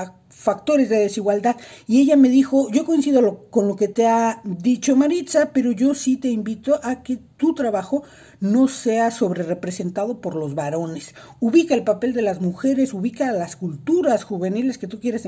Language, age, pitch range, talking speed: Spanish, 50-69, 200-260 Hz, 175 wpm